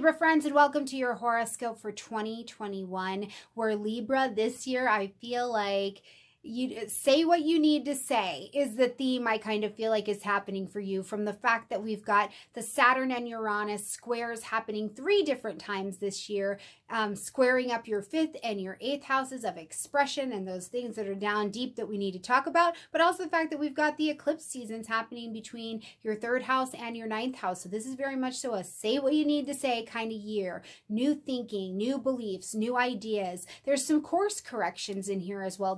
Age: 30-49